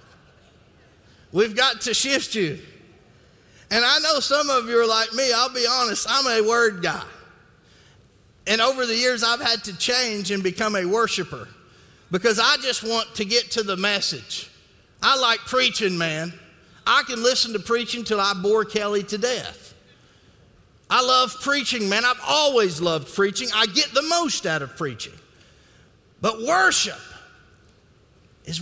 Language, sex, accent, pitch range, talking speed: English, male, American, 180-265 Hz, 155 wpm